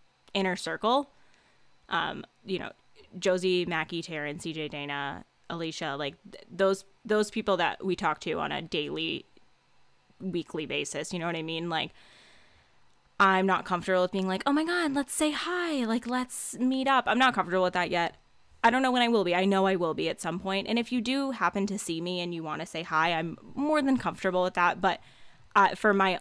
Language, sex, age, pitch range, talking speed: English, female, 10-29, 165-195 Hz, 210 wpm